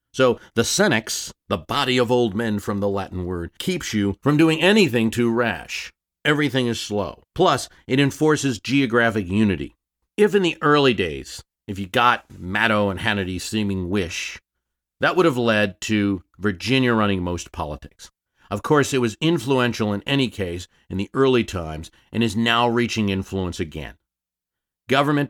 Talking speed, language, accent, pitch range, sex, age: 160 wpm, English, American, 95-120 Hz, male, 40-59